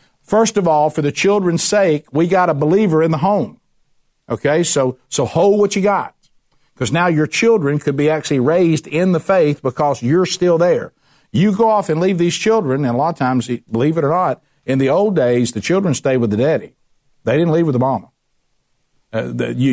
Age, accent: 60-79, American